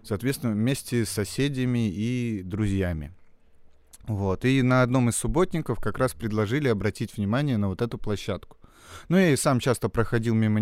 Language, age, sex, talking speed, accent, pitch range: Russian, 30-49, male, 160 wpm, native, 100-125 Hz